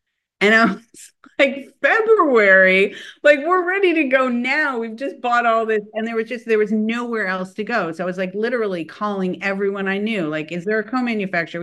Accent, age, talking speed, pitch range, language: American, 50-69, 205 wpm, 160-205 Hz, English